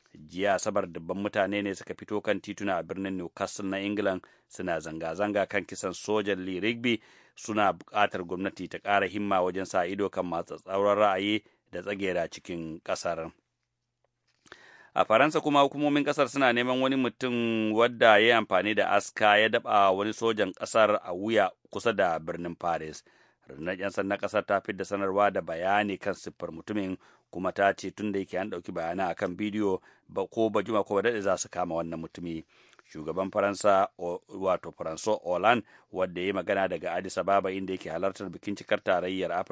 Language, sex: English, male